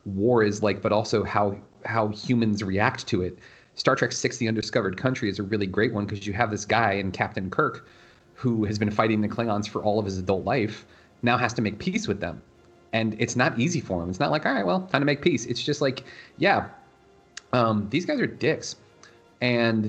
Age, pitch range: 30-49, 100-120 Hz